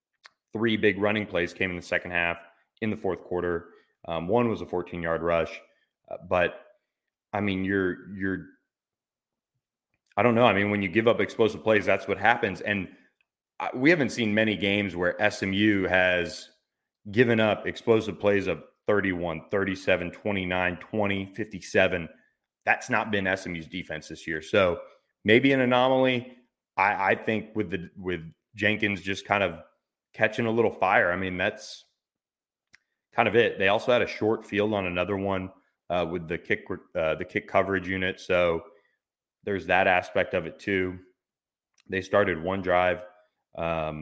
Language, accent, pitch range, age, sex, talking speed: English, American, 85-105 Hz, 30-49, male, 165 wpm